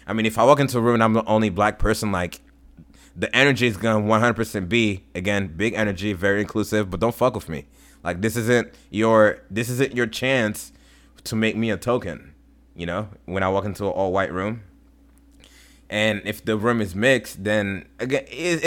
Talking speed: 200 wpm